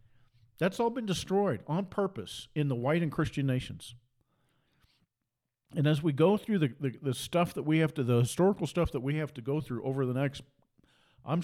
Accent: American